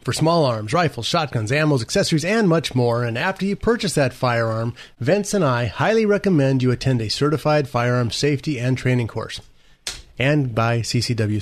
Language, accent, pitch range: English, American, 115-150 Hz